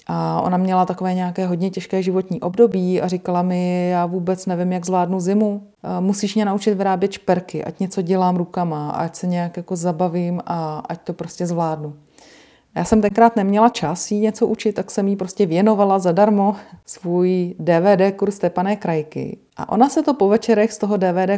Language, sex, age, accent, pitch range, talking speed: Czech, female, 40-59, native, 180-215 Hz, 180 wpm